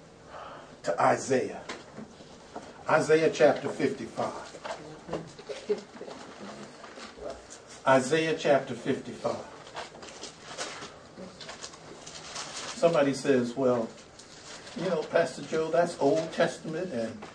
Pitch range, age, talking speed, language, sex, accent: 155-220 Hz, 60-79, 65 wpm, English, male, American